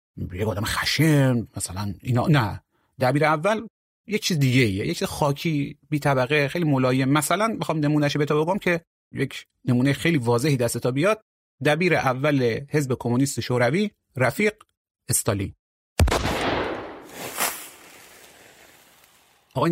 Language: Persian